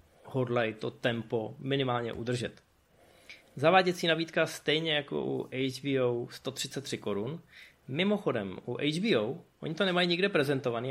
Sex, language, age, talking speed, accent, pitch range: male, Czech, 20-39, 115 wpm, native, 125-155 Hz